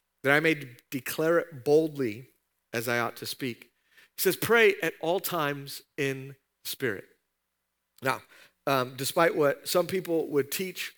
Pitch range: 130-160 Hz